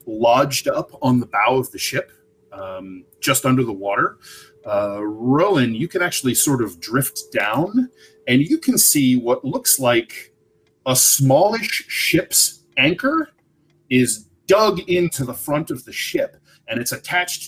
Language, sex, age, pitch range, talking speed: English, male, 30-49, 115-150 Hz, 150 wpm